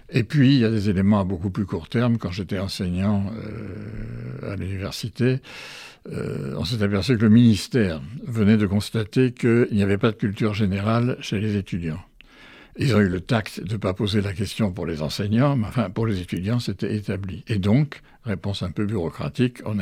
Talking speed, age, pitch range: 200 wpm, 60-79, 100-120 Hz